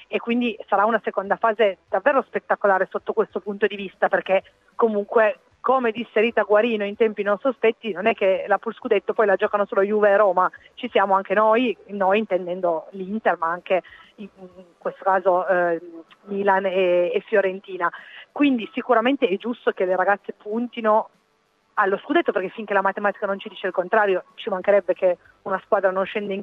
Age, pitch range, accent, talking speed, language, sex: 30-49, 190-220 Hz, native, 180 wpm, Italian, female